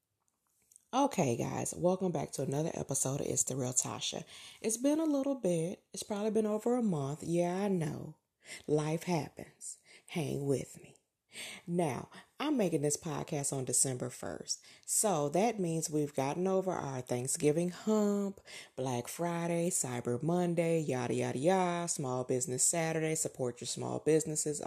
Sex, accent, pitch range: female, American, 145-190 Hz